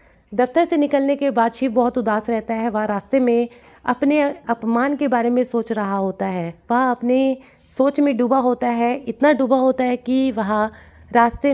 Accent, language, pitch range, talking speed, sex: native, Hindi, 215-260 Hz, 185 wpm, female